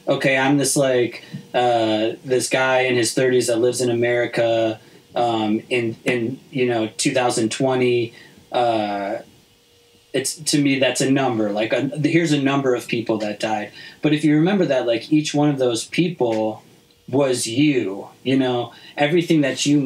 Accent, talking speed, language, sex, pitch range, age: American, 165 wpm, English, male, 115-140 Hz, 30-49